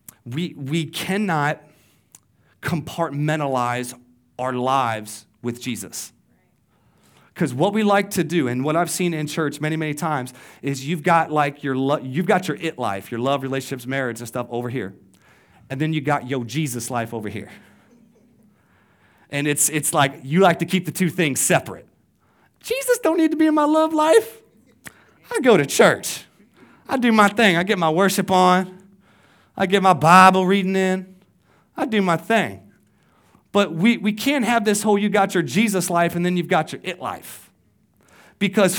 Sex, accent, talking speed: male, American, 180 wpm